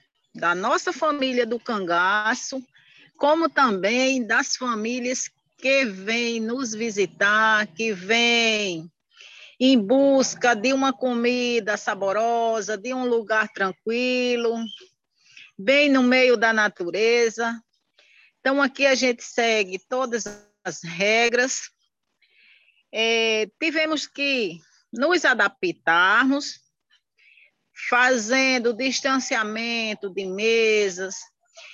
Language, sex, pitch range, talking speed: Portuguese, female, 205-260 Hz, 85 wpm